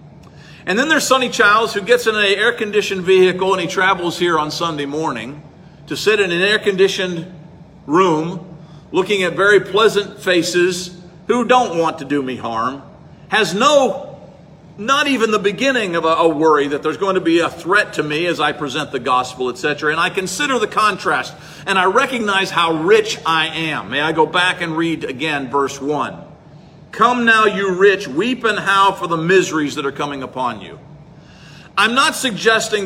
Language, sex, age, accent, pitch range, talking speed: English, male, 50-69, American, 160-210 Hz, 185 wpm